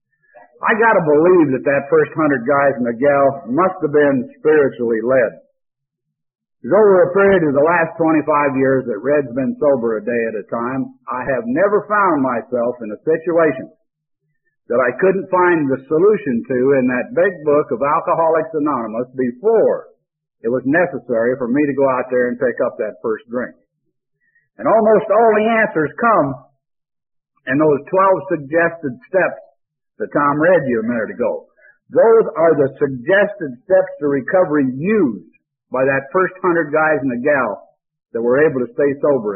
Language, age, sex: English, 50-69, male